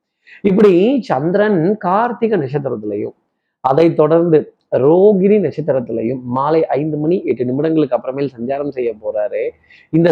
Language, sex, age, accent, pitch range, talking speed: Tamil, male, 30-49, native, 130-160 Hz, 105 wpm